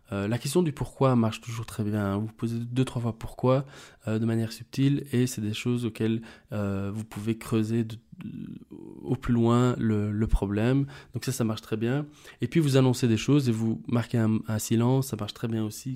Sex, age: male, 20-39